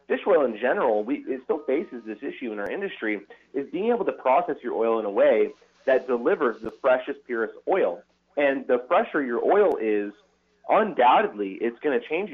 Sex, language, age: male, English, 30-49